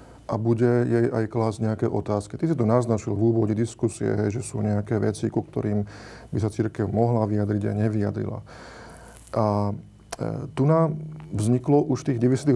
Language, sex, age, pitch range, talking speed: Slovak, male, 40-59, 110-135 Hz, 175 wpm